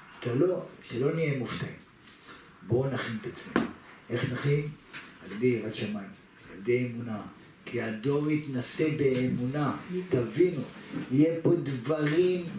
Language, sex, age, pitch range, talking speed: Hebrew, male, 50-69, 140-195 Hz, 120 wpm